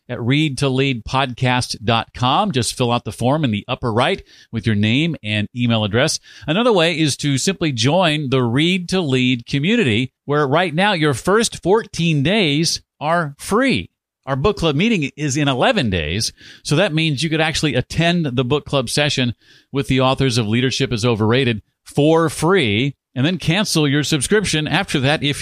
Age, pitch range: 50-69, 110-150 Hz